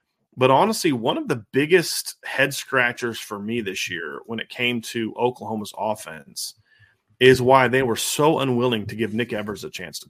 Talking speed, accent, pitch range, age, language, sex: 185 wpm, American, 115-140 Hz, 40-59, English, male